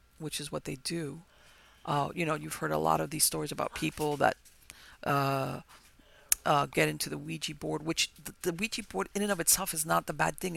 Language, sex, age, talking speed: English, female, 50-69, 220 wpm